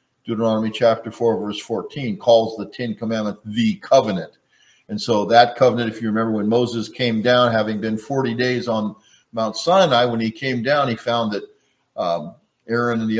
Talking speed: 180 wpm